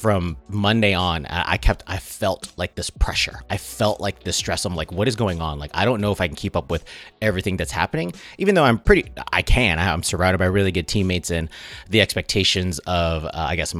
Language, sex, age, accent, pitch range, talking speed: English, male, 30-49, American, 85-105 Hz, 230 wpm